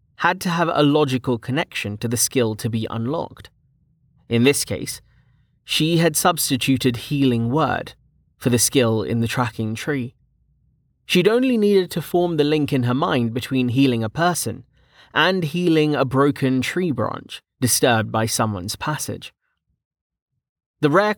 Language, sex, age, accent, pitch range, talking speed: English, male, 30-49, British, 115-155 Hz, 150 wpm